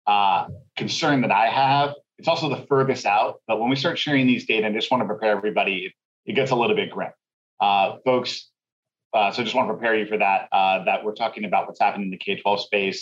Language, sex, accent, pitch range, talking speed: English, male, American, 105-130 Hz, 240 wpm